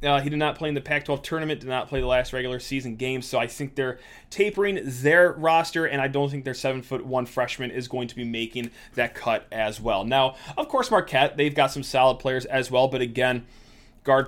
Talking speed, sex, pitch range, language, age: 235 wpm, male, 130-180 Hz, English, 20-39